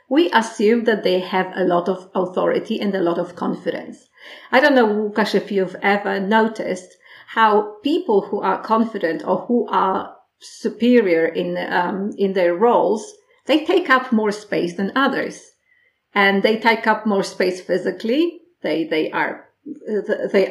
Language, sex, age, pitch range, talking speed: English, female, 40-59, 190-255 Hz, 160 wpm